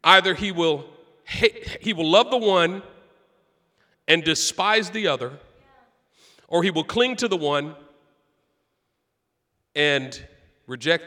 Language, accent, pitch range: English, American, 145-200 Hz